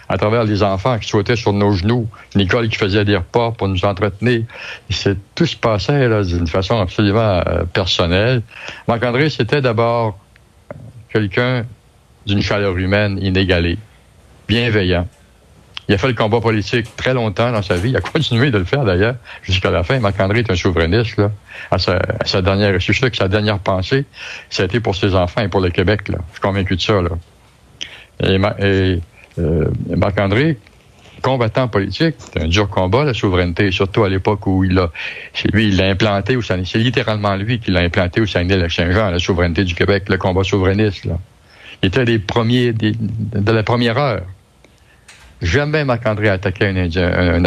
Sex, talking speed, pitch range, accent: male, 185 wpm, 95-115 Hz, French